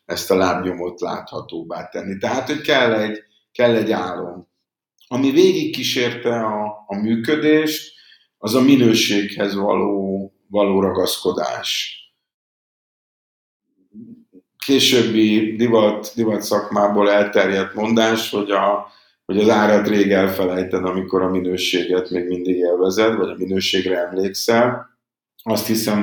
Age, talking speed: 50-69, 115 wpm